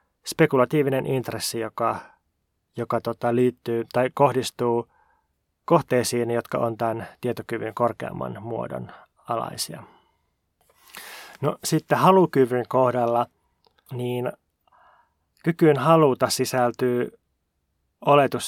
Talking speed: 80 wpm